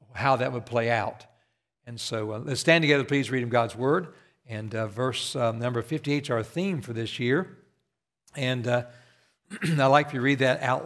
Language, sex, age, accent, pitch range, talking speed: English, male, 60-79, American, 120-145 Hz, 200 wpm